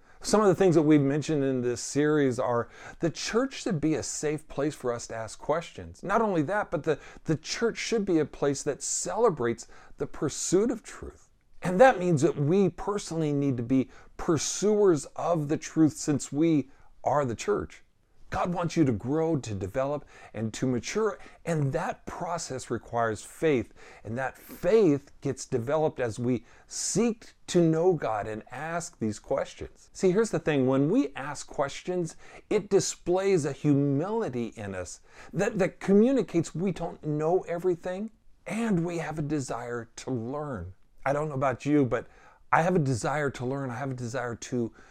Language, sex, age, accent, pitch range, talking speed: English, male, 50-69, American, 125-175 Hz, 180 wpm